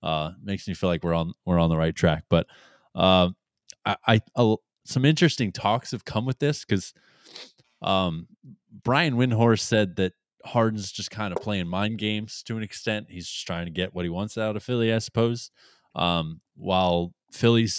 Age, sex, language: 20-39, male, English